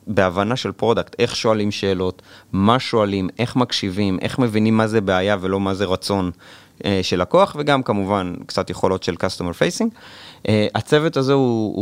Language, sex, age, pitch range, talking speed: Hebrew, male, 30-49, 95-120 Hz, 170 wpm